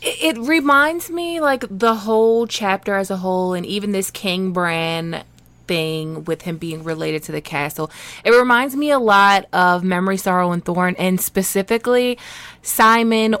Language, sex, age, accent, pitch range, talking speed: English, female, 20-39, American, 180-235 Hz, 160 wpm